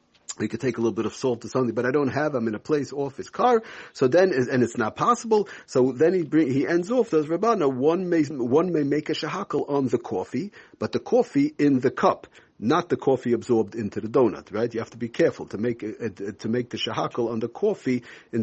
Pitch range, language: 110-140 Hz, English